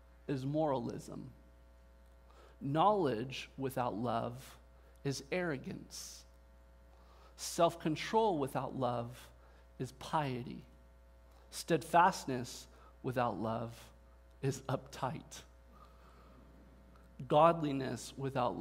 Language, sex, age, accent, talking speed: English, male, 40-59, American, 60 wpm